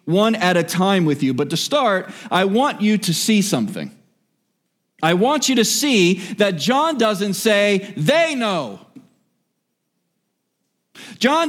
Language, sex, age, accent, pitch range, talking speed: English, male, 40-59, American, 200-275 Hz, 140 wpm